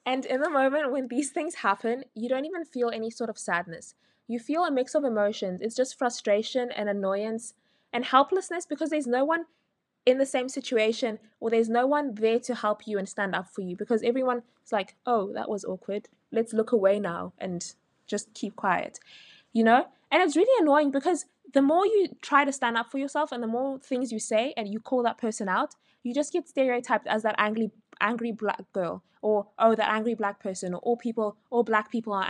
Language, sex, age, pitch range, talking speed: English, female, 20-39, 215-275 Hz, 220 wpm